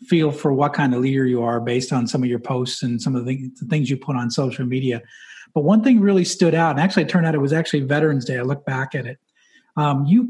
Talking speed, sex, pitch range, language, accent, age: 270 wpm, male, 130-170 Hz, English, American, 40-59